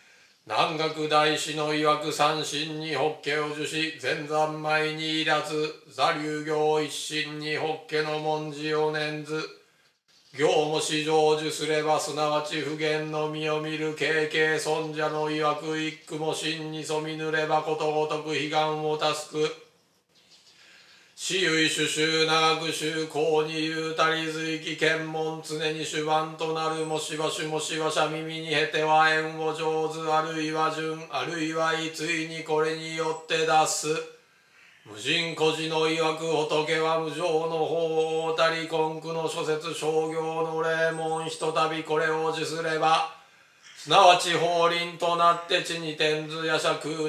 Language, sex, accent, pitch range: Japanese, male, native, 155-160 Hz